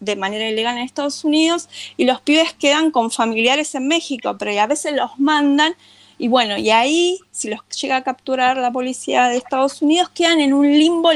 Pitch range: 240-315 Hz